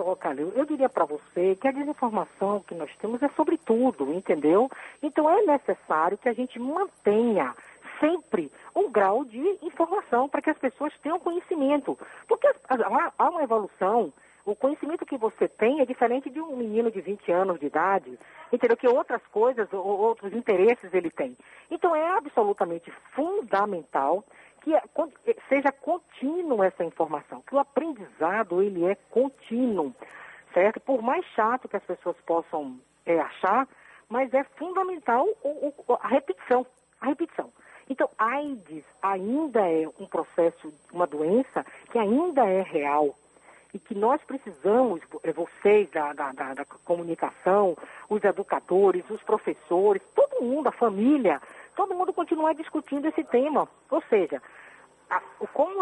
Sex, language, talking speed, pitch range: female, Portuguese, 140 wpm, 190-285 Hz